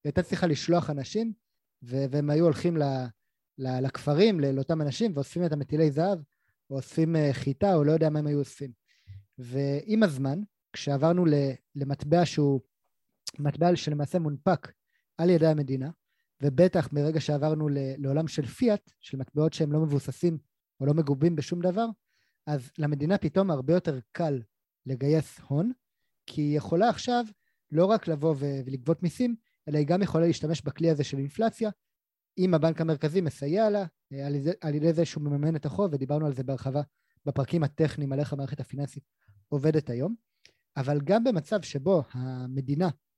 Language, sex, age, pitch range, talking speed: Hebrew, male, 30-49, 140-175 Hz, 155 wpm